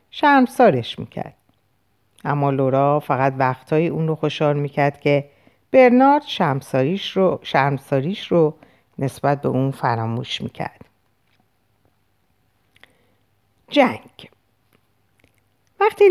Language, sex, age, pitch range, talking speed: Persian, female, 50-69, 120-200 Hz, 85 wpm